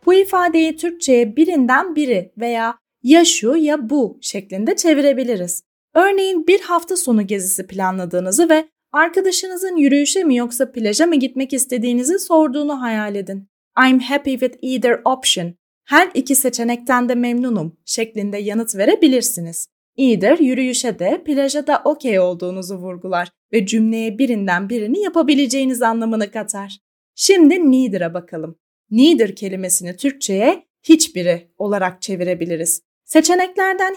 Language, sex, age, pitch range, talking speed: Turkish, female, 30-49, 195-300 Hz, 120 wpm